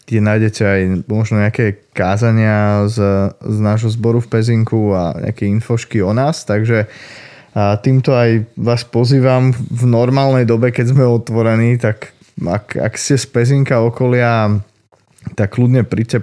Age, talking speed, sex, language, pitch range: 20-39, 145 wpm, male, Slovak, 110-130 Hz